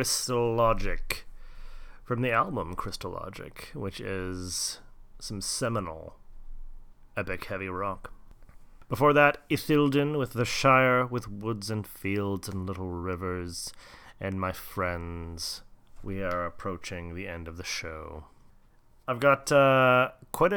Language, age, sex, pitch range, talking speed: English, 30-49, male, 95-125 Hz, 125 wpm